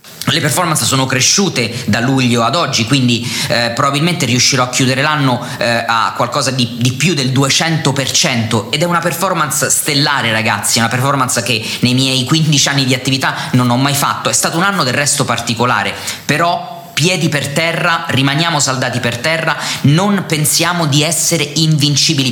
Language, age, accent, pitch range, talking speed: Italian, 20-39, native, 125-160 Hz, 165 wpm